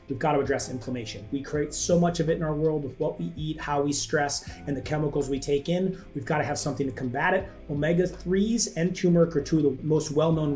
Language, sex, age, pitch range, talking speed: English, male, 30-49, 140-175 Hz, 250 wpm